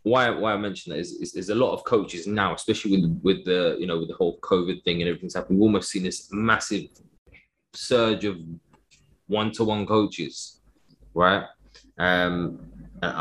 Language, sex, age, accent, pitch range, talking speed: English, male, 20-39, British, 90-110 Hz, 175 wpm